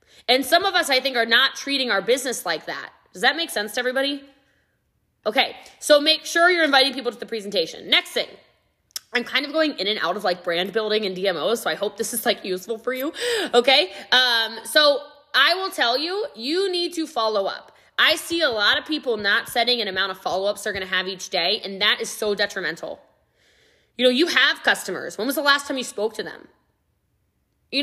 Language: English